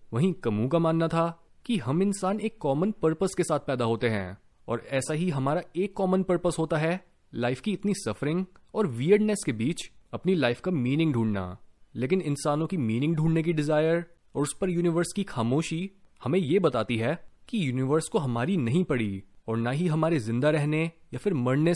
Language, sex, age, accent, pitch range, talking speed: Hindi, male, 30-49, native, 125-180 Hz, 195 wpm